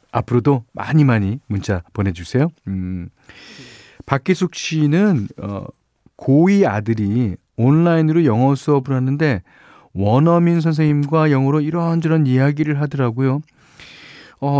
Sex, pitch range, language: male, 95-140 Hz, Korean